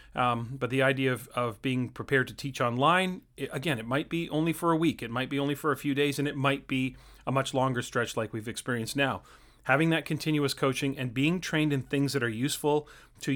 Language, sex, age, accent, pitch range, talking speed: English, male, 30-49, American, 125-155 Hz, 235 wpm